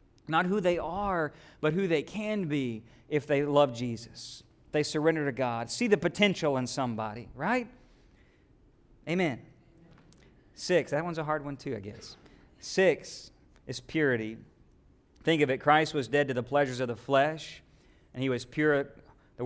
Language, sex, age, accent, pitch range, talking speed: English, male, 40-59, American, 130-170 Hz, 165 wpm